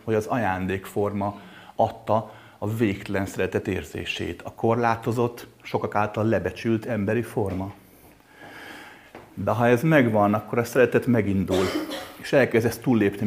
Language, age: Hungarian, 30-49